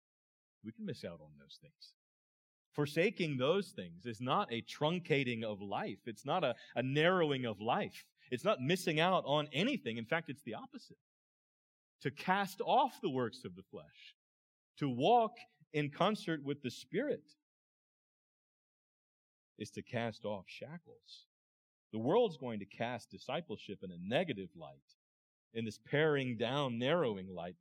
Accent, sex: American, male